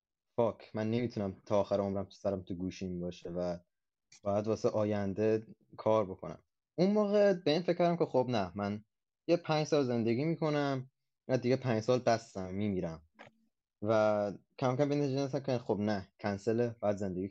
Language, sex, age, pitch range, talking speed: Persian, male, 20-39, 100-120 Hz, 165 wpm